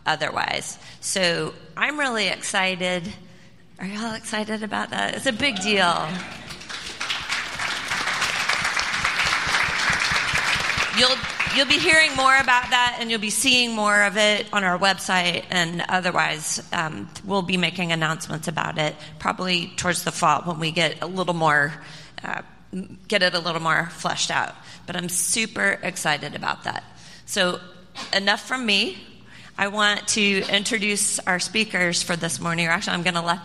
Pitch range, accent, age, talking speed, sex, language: 175-205 Hz, American, 30-49, 150 wpm, female, English